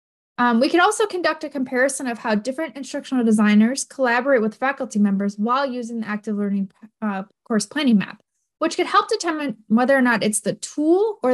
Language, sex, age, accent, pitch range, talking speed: English, female, 10-29, American, 210-275 Hz, 190 wpm